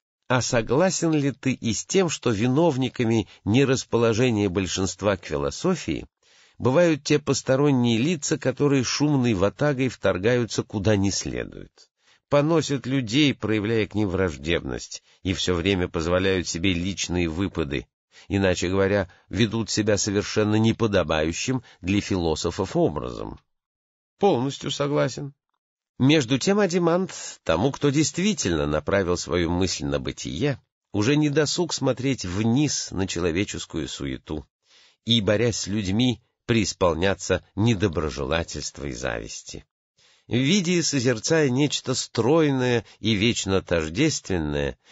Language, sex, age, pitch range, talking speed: English, male, 50-69, 95-135 Hz, 110 wpm